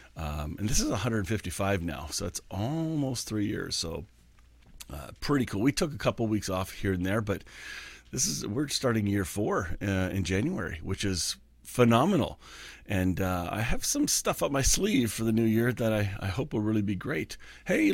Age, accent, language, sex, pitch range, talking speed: 40-59, American, English, male, 90-120 Hz, 195 wpm